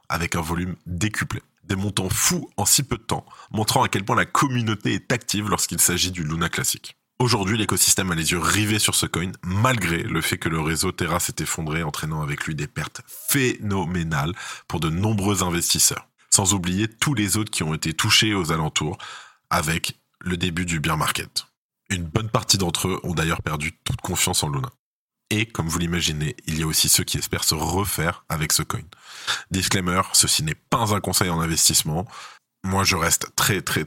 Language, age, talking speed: French, 20-39, 195 wpm